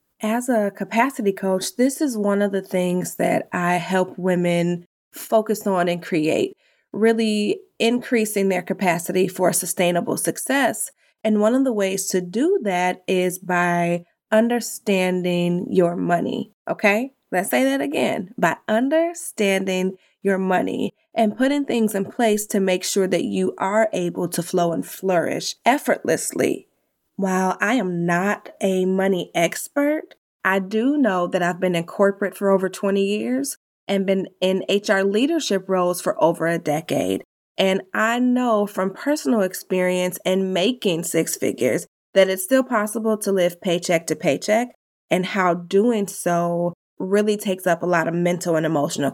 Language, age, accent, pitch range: English, 20-39, American, 180-225 Hz